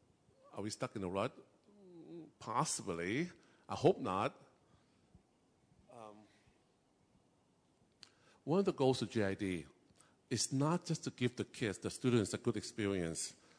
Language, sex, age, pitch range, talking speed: English, male, 50-69, 100-135 Hz, 130 wpm